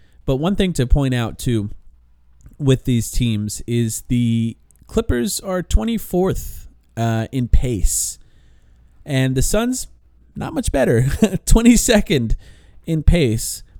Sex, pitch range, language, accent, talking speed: male, 100-145 Hz, English, American, 115 wpm